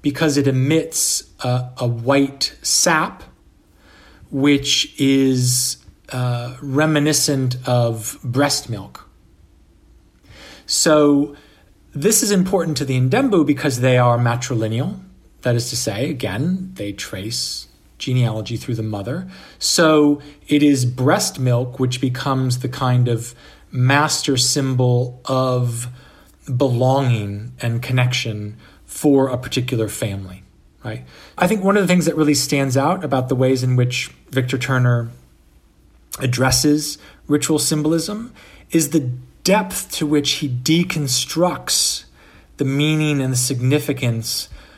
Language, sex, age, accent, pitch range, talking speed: English, male, 40-59, American, 120-150 Hz, 120 wpm